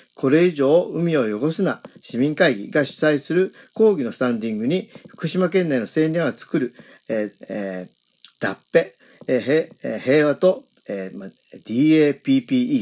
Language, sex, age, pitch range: Japanese, male, 50-69, 135-180 Hz